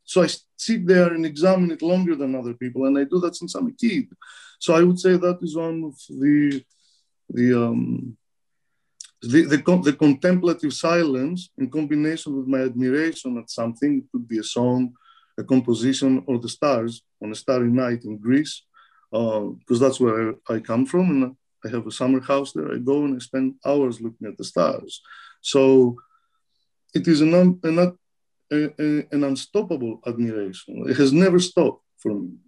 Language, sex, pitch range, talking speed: English, male, 125-170 Hz, 185 wpm